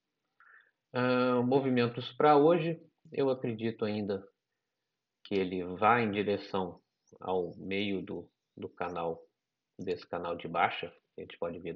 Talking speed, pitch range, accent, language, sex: 130 wpm, 95-115 Hz, Brazilian, Portuguese, male